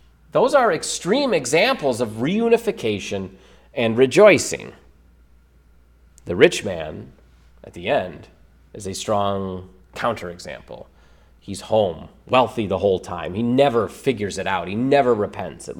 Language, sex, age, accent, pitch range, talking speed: English, male, 30-49, American, 100-160 Hz, 125 wpm